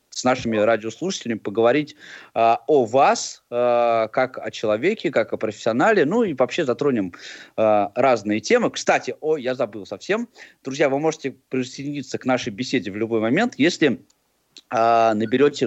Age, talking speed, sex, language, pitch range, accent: 20-39, 145 wpm, male, Russian, 110-140 Hz, native